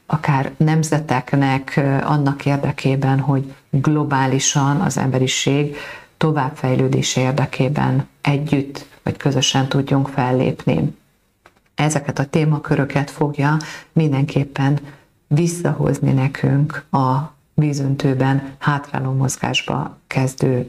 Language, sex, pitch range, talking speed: Hungarian, female, 135-150 Hz, 80 wpm